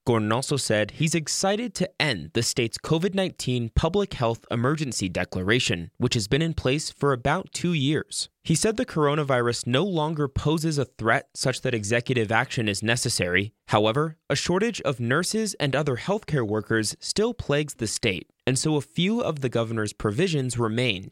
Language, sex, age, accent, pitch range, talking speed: English, male, 20-39, American, 110-170 Hz, 170 wpm